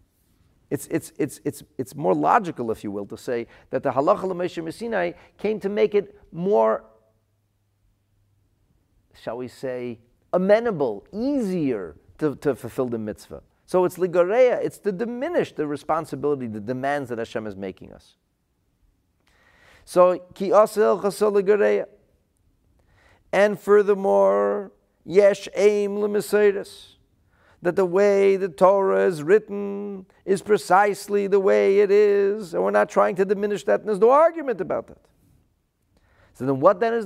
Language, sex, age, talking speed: English, male, 50-69, 140 wpm